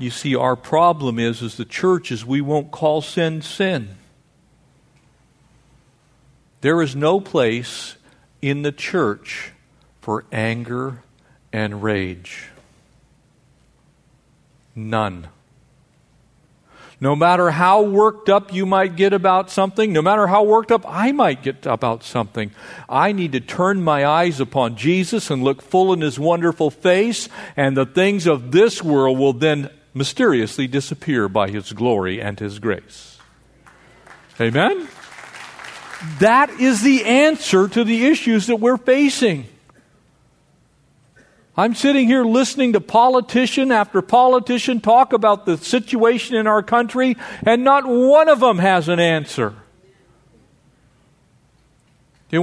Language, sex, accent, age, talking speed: English, male, American, 50-69, 130 wpm